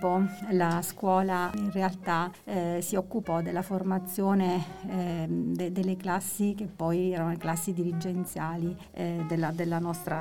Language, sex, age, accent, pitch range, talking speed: Italian, female, 40-59, native, 175-195 Hz, 135 wpm